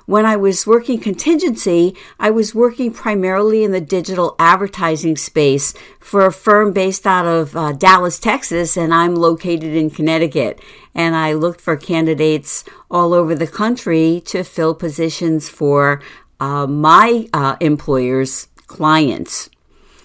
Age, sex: 50-69, female